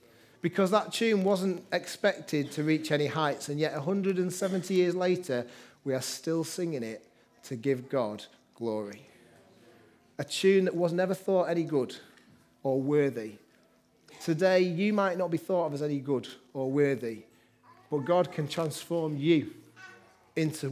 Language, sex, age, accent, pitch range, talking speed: English, male, 30-49, British, 135-185 Hz, 150 wpm